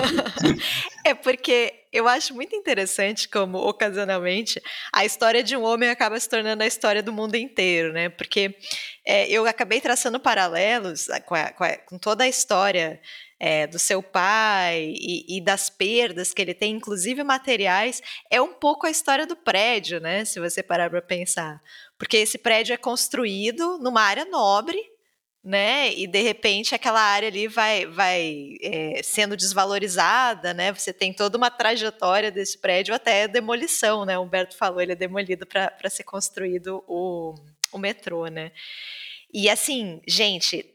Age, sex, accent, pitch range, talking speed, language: 20-39, female, Brazilian, 185-235 Hz, 155 wpm, Portuguese